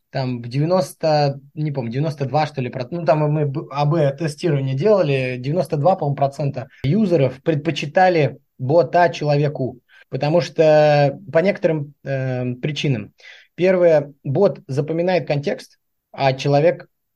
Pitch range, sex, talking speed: 135-165 Hz, male, 110 wpm